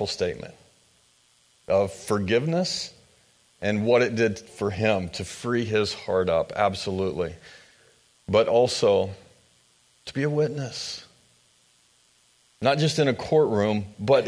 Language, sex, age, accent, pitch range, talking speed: English, male, 40-59, American, 95-135 Hz, 115 wpm